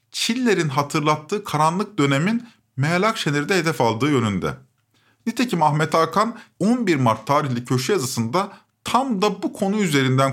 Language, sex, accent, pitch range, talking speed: Turkish, male, native, 115-165 Hz, 120 wpm